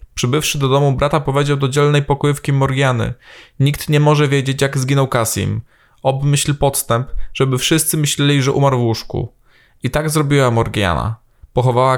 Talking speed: 150 wpm